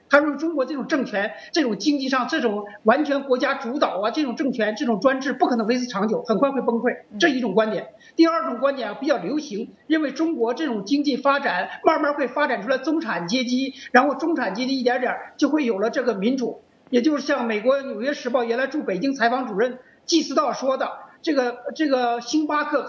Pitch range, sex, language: 245-300 Hz, male, English